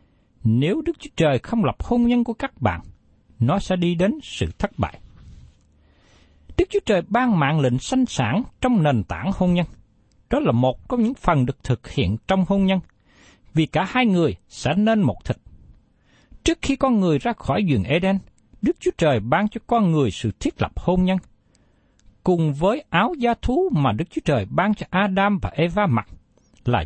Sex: male